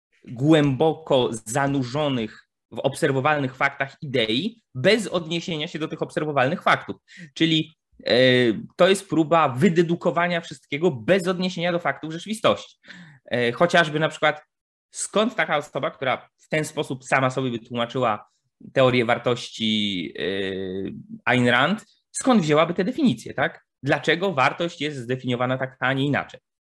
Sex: male